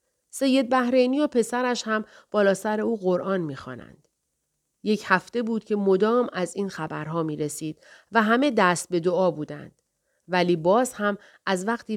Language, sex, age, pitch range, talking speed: Persian, female, 40-59, 170-215 Hz, 155 wpm